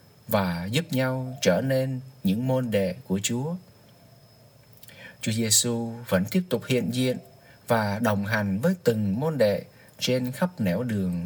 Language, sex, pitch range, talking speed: Vietnamese, male, 110-145 Hz, 150 wpm